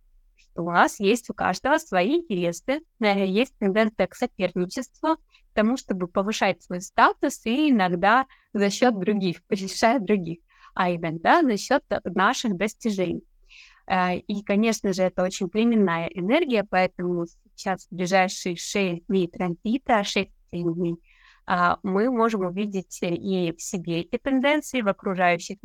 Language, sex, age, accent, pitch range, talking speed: Russian, female, 20-39, native, 185-230 Hz, 135 wpm